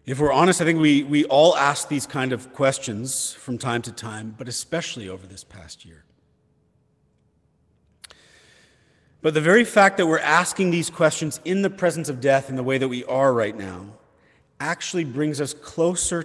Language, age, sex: English, 40-59, male